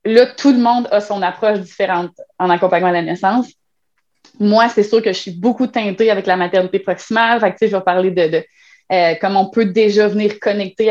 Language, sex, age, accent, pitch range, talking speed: French, female, 20-39, Canadian, 190-235 Hz, 215 wpm